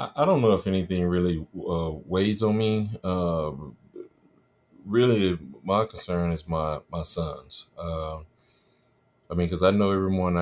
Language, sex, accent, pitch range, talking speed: English, male, American, 80-95 Hz, 150 wpm